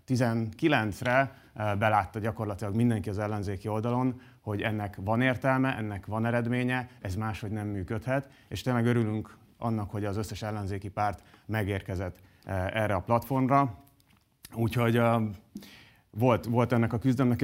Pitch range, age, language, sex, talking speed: 105-125 Hz, 30-49, Hungarian, male, 125 wpm